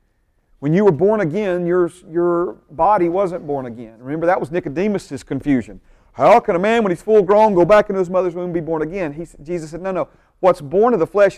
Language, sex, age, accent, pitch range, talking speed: English, male, 40-59, American, 150-195 Hz, 230 wpm